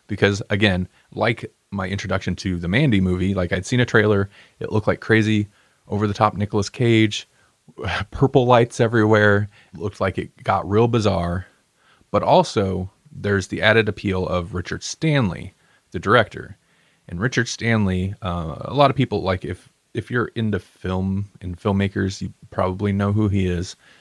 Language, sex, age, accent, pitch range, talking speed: English, male, 30-49, American, 95-115 Hz, 165 wpm